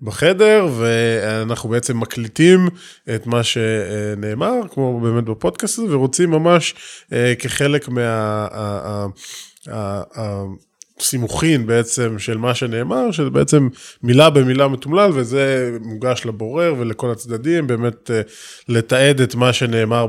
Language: Hebrew